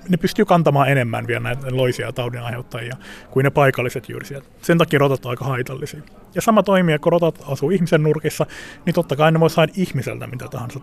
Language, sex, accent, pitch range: Finnish, male, native, 130-165 Hz